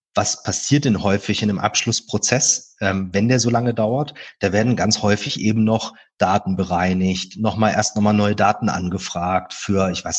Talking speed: 185 wpm